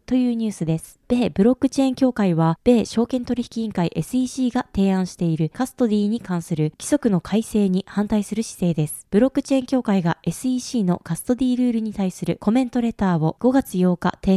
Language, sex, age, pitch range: Japanese, female, 20-39, 180-255 Hz